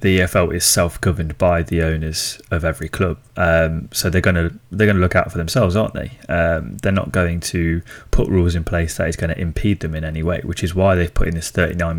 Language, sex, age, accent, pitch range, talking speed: English, male, 20-39, British, 85-105 Hz, 250 wpm